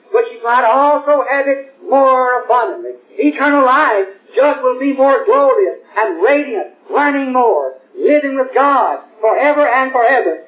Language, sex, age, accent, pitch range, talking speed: English, male, 50-69, American, 255-330 Hz, 145 wpm